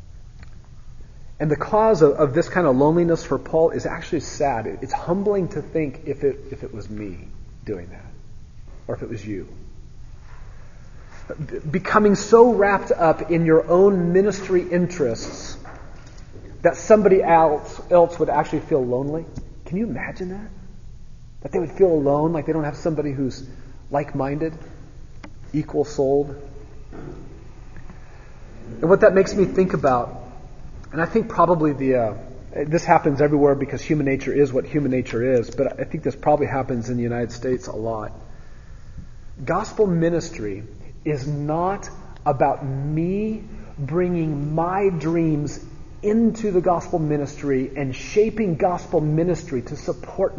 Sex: male